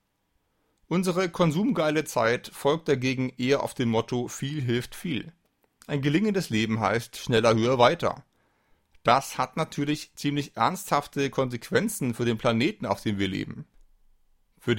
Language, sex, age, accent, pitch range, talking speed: German, male, 40-59, German, 115-155 Hz, 135 wpm